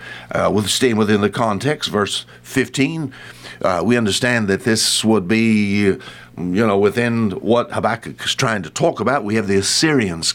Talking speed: 170 wpm